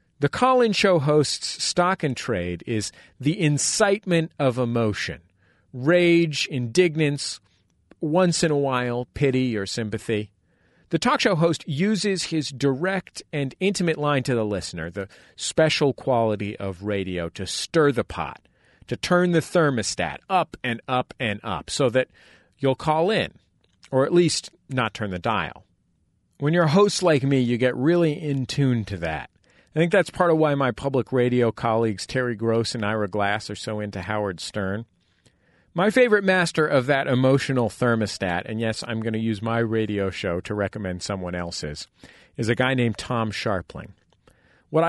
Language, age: English, 40-59